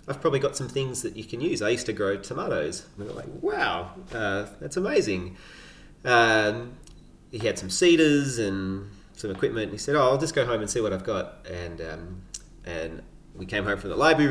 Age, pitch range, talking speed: 30-49, 90-120 Hz, 220 wpm